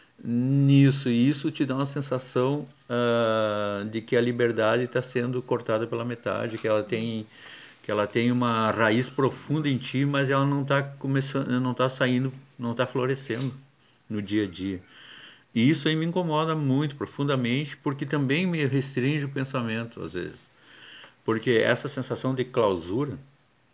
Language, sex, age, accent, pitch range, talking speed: Portuguese, male, 50-69, Brazilian, 120-145 Hz, 160 wpm